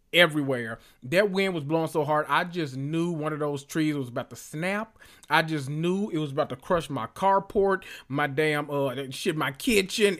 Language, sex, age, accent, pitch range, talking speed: English, male, 30-49, American, 140-170 Hz, 200 wpm